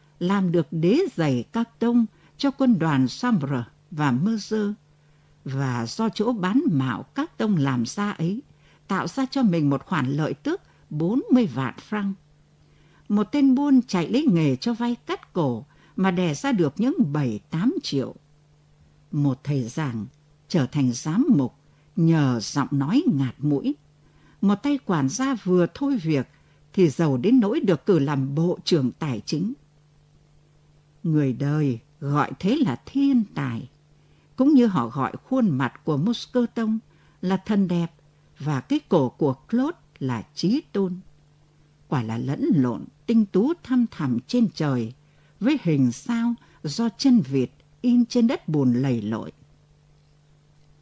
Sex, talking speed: female, 150 wpm